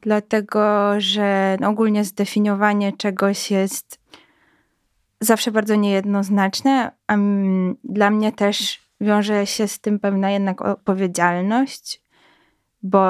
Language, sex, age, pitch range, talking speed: Polish, female, 20-39, 185-210 Hz, 95 wpm